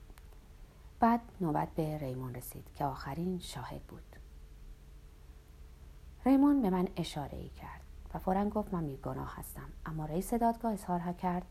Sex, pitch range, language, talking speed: female, 145-200 Hz, Persian, 130 wpm